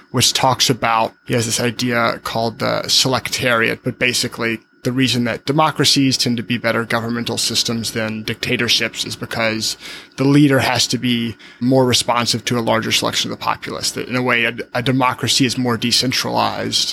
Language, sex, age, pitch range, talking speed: English, male, 20-39, 115-130 Hz, 175 wpm